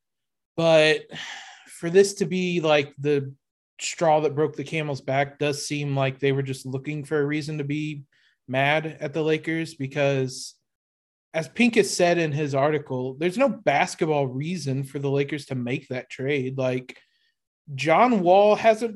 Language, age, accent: English, 30-49, American